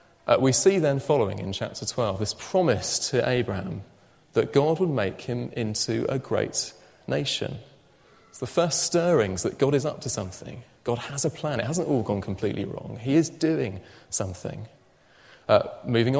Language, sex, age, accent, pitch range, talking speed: English, male, 30-49, British, 110-145 Hz, 175 wpm